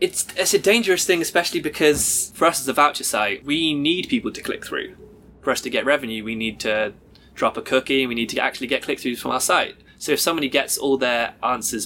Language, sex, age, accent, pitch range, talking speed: English, male, 20-39, British, 115-150 Hz, 240 wpm